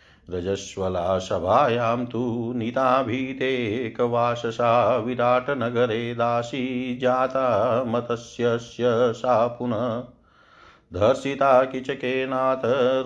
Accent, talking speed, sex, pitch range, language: native, 55 wpm, male, 120-130 Hz, Hindi